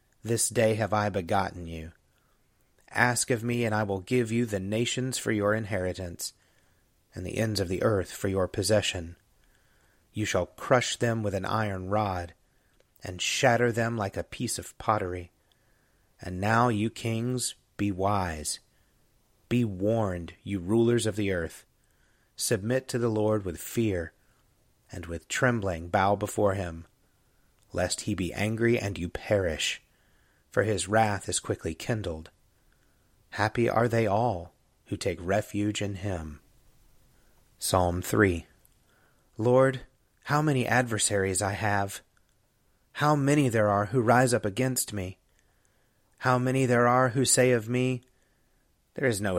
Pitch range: 95-120 Hz